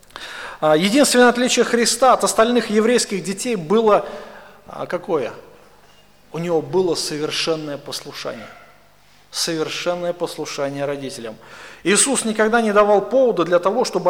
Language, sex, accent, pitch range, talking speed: Russian, male, native, 170-230 Hz, 105 wpm